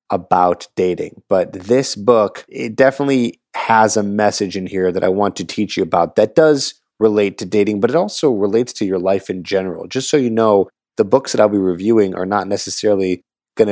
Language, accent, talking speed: English, American, 205 wpm